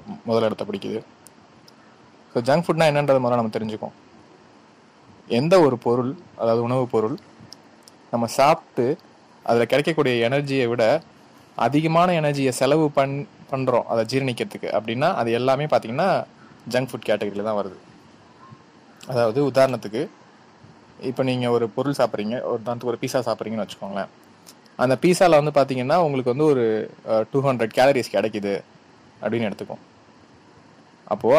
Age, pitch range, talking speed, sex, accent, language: 30-49, 115-145 Hz, 120 wpm, male, native, Tamil